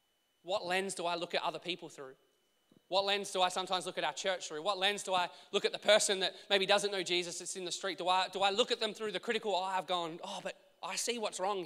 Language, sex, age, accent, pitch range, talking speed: English, male, 20-39, Australian, 175-205 Hz, 285 wpm